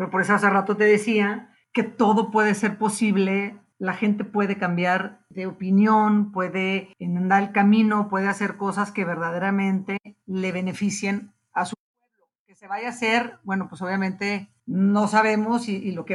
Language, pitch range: Spanish, 190-215 Hz